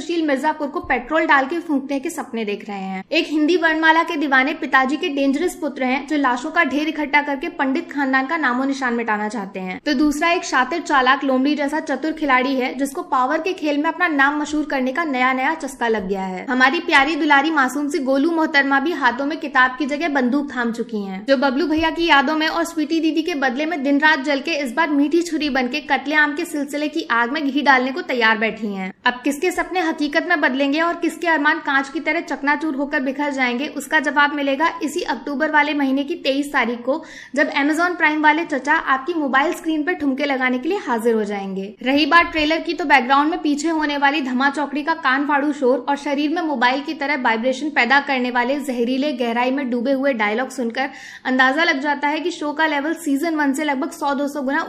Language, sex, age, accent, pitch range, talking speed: Hindi, female, 20-39, native, 265-315 Hz, 220 wpm